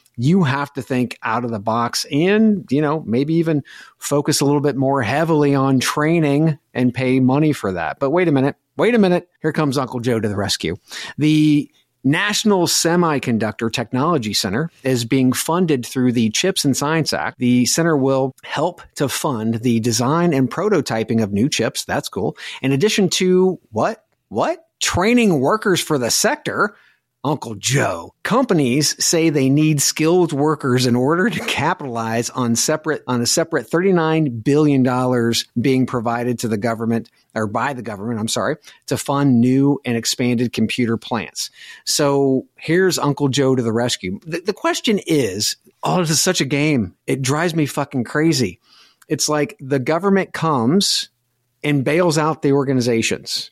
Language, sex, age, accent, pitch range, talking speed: English, male, 50-69, American, 125-160 Hz, 165 wpm